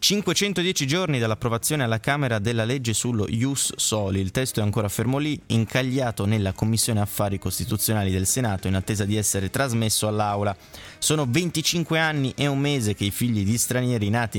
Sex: male